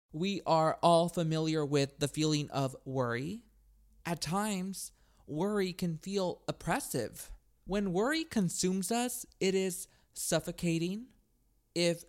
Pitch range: 145-195 Hz